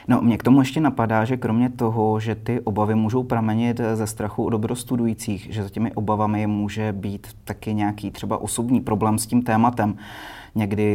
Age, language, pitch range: 30-49, Czech, 100-110 Hz